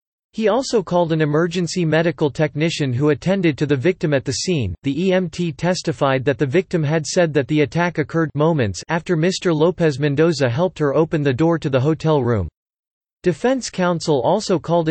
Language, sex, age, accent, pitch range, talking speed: English, male, 40-59, American, 145-180 Hz, 180 wpm